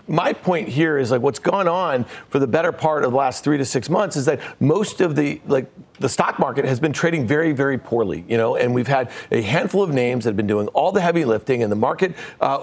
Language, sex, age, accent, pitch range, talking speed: English, male, 40-59, American, 135-175 Hz, 260 wpm